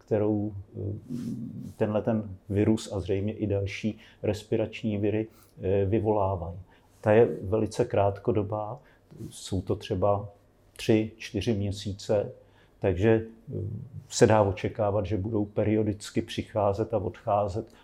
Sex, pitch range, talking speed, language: male, 100-110 Hz, 105 wpm, Slovak